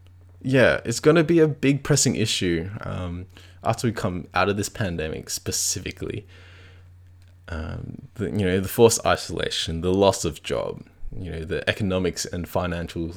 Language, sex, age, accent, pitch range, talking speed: English, male, 20-39, Australian, 90-115 Hz, 155 wpm